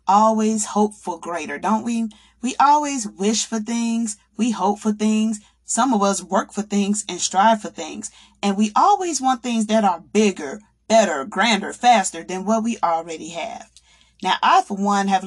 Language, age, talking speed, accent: English, 30-49, 180 wpm, American